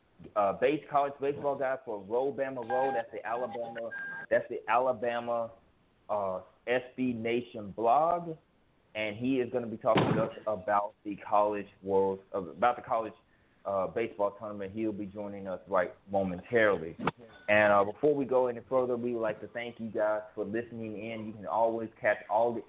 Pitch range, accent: 100-120 Hz, American